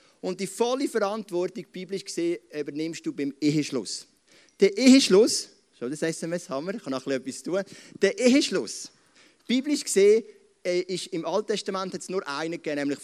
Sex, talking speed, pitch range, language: male, 165 wpm, 130-190 Hz, German